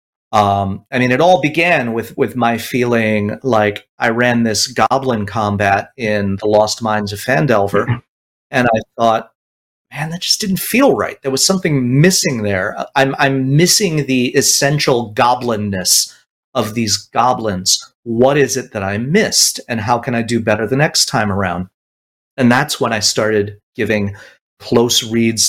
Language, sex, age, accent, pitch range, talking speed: English, male, 30-49, American, 105-130 Hz, 160 wpm